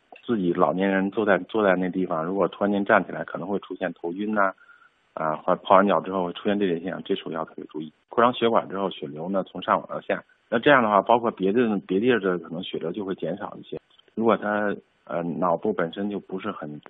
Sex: male